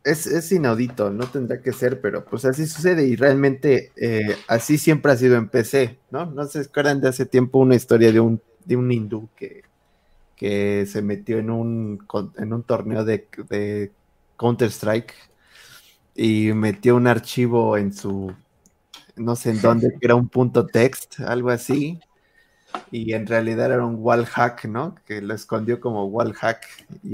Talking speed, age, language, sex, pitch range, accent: 170 wpm, 20-39, Spanish, male, 110-135 Hz, Mexican